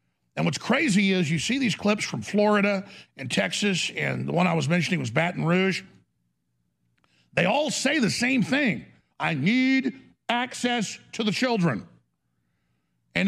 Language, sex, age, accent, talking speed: English, male, 50-69, American, 155 wpm